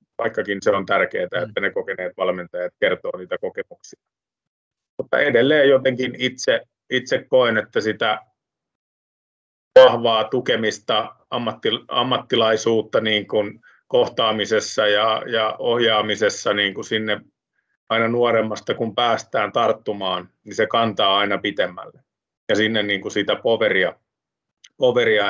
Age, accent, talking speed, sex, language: 30-49, native, 115 wpm, male, Finnish